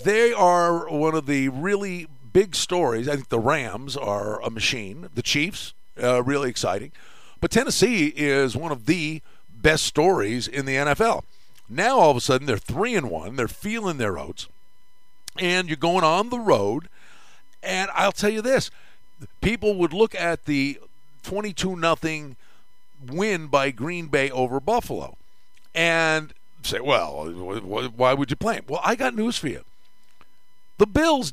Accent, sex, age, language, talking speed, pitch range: American, male, 50-69, English, 155 wpm, 140-210 Hz